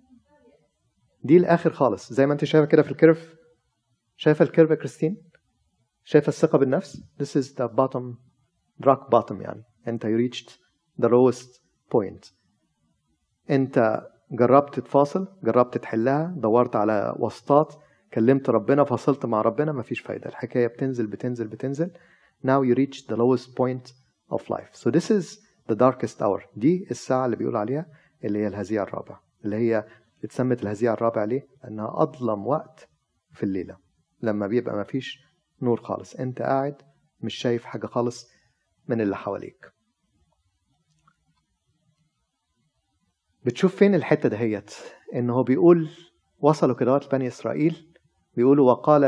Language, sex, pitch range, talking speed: Arabic, male, 115-150 Hz, 140 wpm